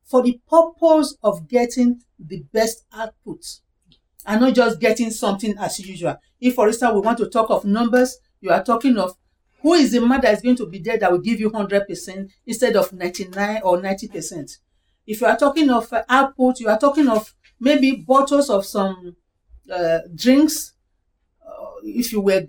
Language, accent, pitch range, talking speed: English, Nigerian, 200-265 Hz, 180 wpm